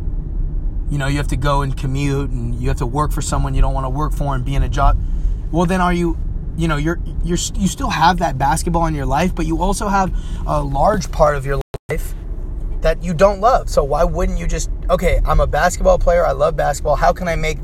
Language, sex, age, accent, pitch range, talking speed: English, male, 20-39, American, 110-175 Hz, 240 wpm